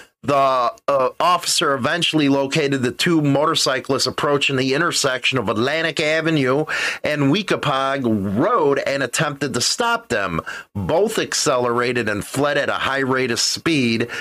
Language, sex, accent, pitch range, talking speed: English, male, American, 130-175 Hz, 135 wpm